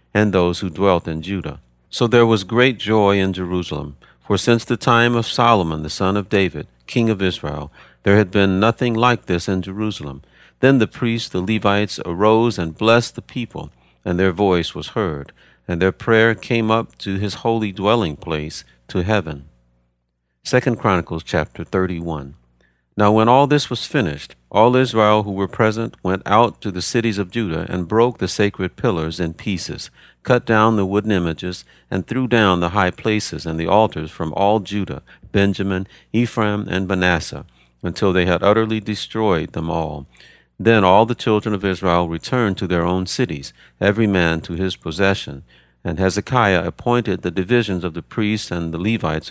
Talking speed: 175 wpm